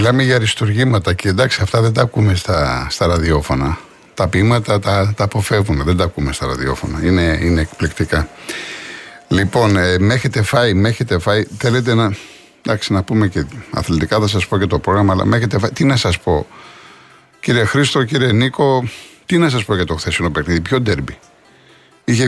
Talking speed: 185 wpm